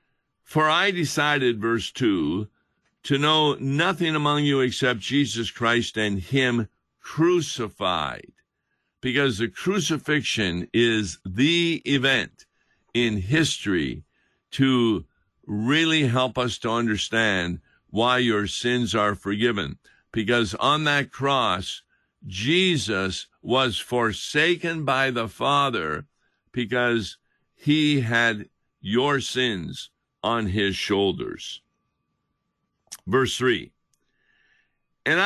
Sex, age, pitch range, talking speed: male, 50-69, 115-145 Hz, 95 wpm